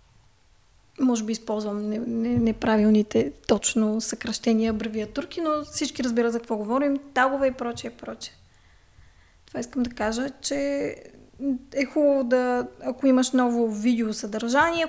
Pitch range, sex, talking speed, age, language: 235-280 Hz, female, 125 wpm, 20-39, Bulgarian